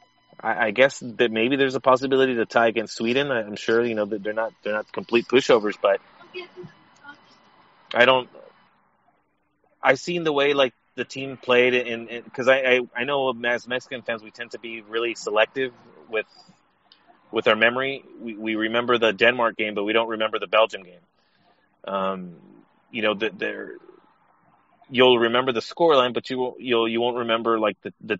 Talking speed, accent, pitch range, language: 185 wpm, American, 110-130 Hz, English